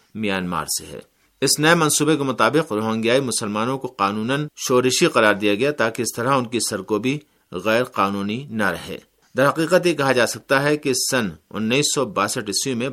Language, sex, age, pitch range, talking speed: Urdu, male, 50-69, 100-130 Hz, 185 wpm